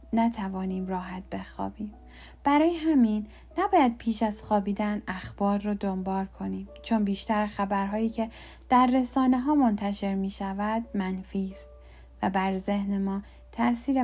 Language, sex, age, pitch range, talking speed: Persian, female, 10-29, 190-225 Hz, 125 wpm